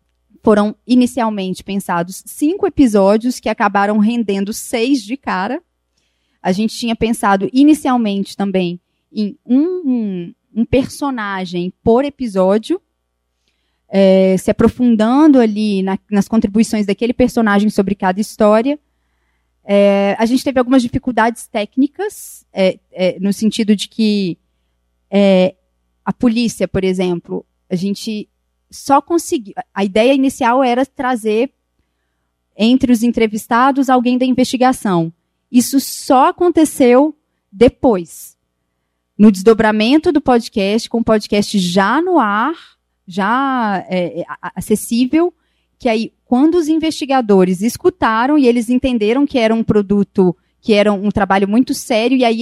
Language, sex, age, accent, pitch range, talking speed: Portuguese, female, 20-39, Brazilian, 190-250 Hz, 115 wpm